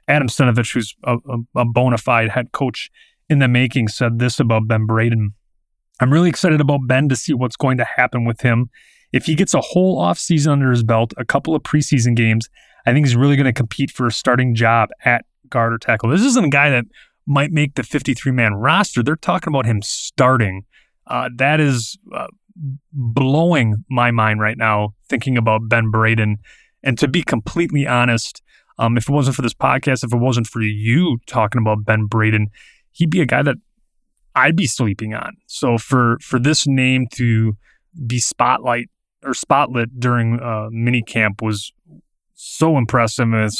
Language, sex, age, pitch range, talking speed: English, male, 20-39, 115-140 Hz, 185 wpm